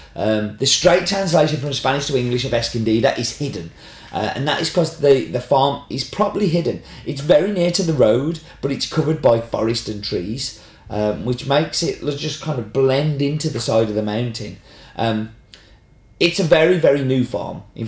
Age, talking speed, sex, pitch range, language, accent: 30-49, 195 wpm, male, 110-140 Hz, English, British